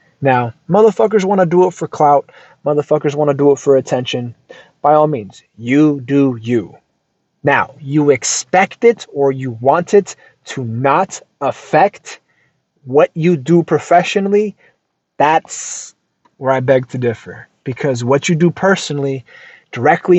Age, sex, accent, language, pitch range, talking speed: 30-49, male, American, English, 135-170 Hz, 145 wpm